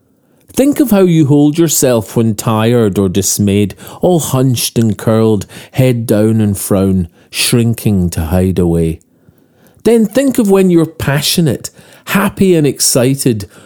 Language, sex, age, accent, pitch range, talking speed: English, male, 40-59, British, 105-165 Hz, 135 wpm